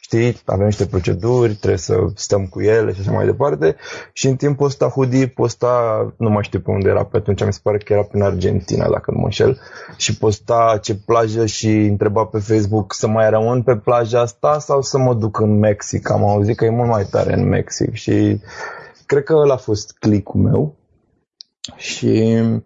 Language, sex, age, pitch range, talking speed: Romanian, male, 20-39, 105-120 Hz, 200 wpm